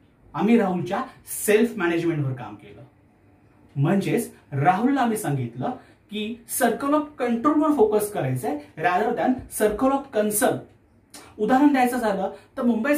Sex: male